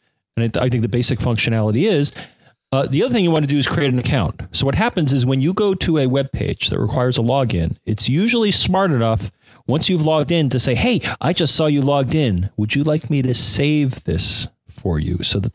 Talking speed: 240 wpm